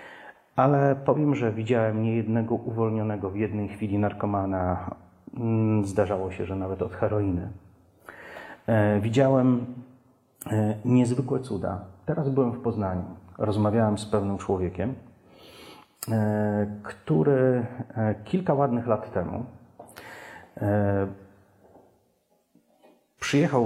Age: 40-59